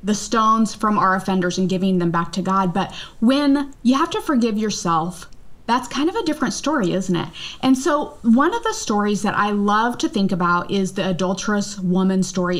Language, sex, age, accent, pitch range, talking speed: English, female, 20-39, American, 190-245 Hz, 205 wpm